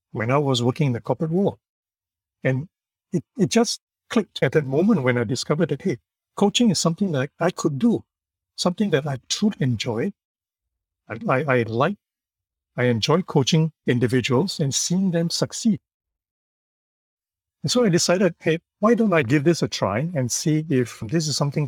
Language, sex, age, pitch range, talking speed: English, male, 60-79, 95-160 Hz, 175 wpm